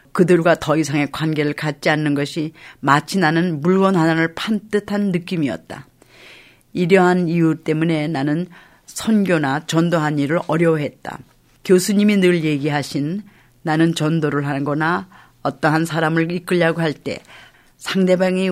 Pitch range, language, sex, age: 150-180 Hz, Korean, female, 40-59